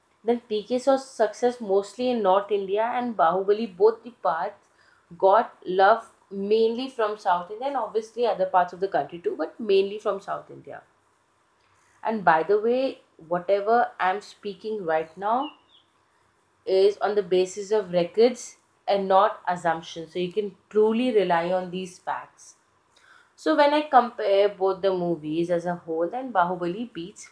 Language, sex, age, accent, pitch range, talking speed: Hindi, female, 20-39, native, 180-230 Hz, 155 wpm